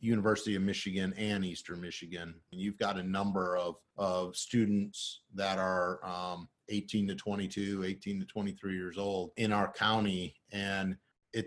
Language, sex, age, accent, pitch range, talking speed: English, male, 40-59, American, 95-105 Hz, 155 wpm